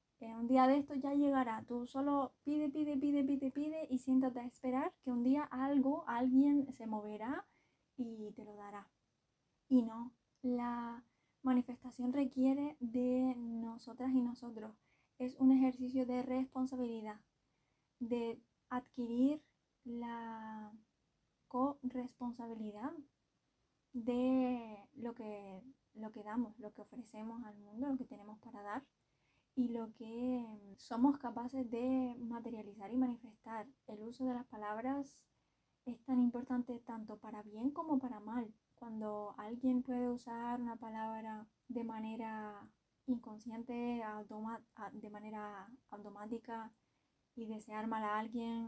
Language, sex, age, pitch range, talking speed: Spanish, female, 10-29, 220-255 Hz, 130 wpm